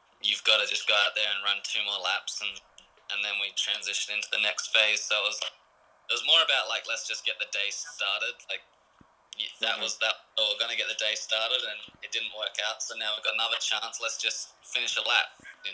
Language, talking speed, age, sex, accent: English, 240 wpm, 20-39, male, Australian